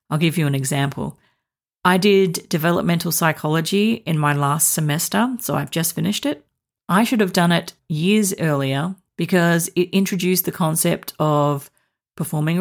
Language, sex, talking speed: English, female, 150 wpm